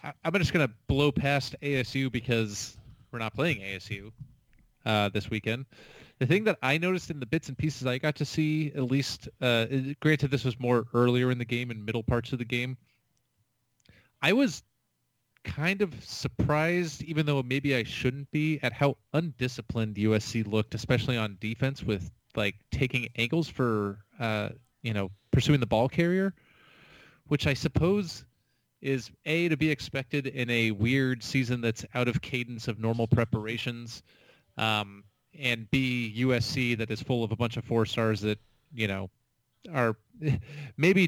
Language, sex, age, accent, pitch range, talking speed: English, male, 30-49, American, 115-145 Hz, 165 wpm